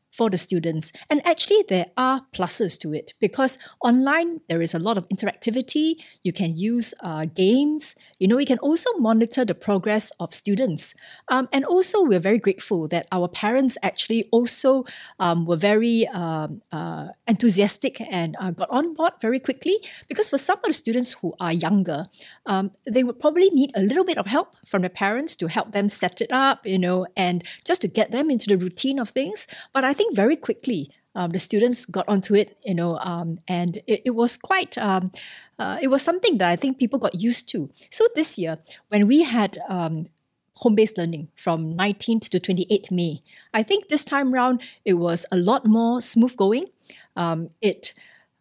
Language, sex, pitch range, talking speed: English, female, 185-265 Hz, 195 wpm